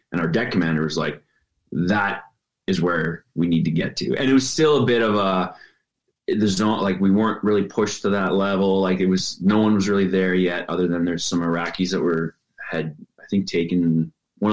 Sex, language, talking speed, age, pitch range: male, English, 220 wpm, 20-39, 85-100 Hz